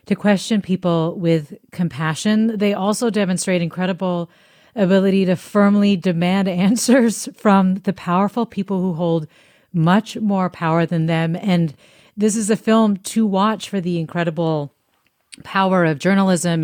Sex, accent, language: female, American, English